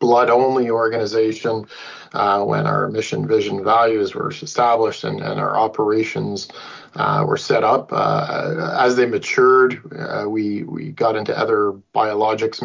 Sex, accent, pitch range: male, American, 110-130 Hz